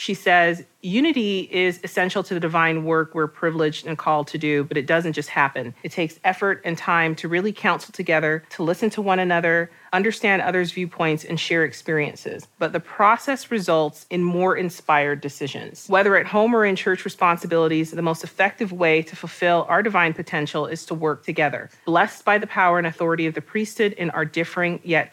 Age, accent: 30-49, American